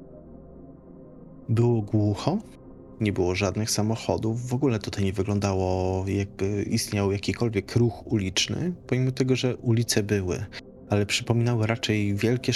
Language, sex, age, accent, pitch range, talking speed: Polish, male, 20-39, native, 100-115 Hz, 120 wpm